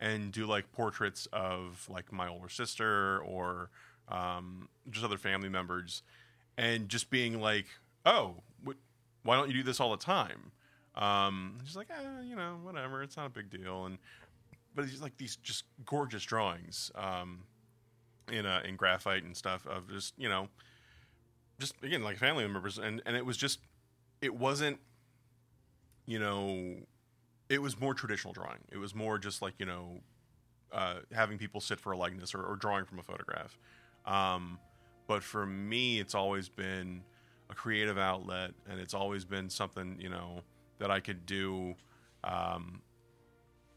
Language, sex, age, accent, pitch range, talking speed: English, male, 20-39, American, 95-120 Hz, 165 wpm